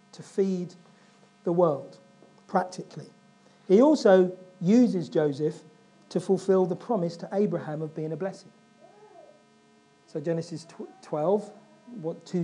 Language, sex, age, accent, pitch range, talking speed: English, male, 40-59, British, 150-205 Hz, 115 wpm